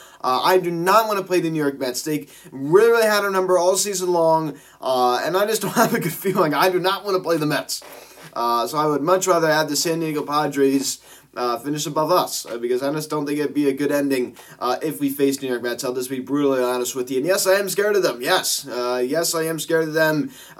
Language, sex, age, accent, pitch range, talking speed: English, male, 20-39, American, 145-190 Hz, 270 wpm